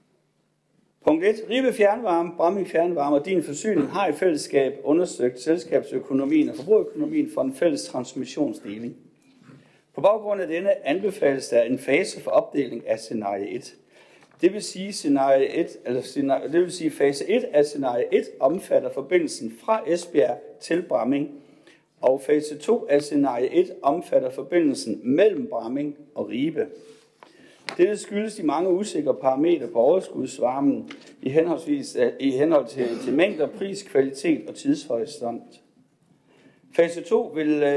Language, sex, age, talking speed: Danish, male, 60-79, 130 wpm